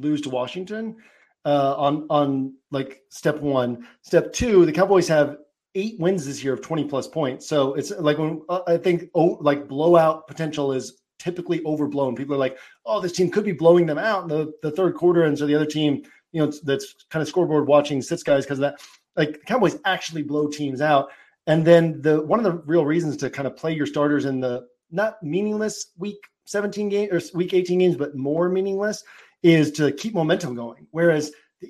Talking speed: 210 wpm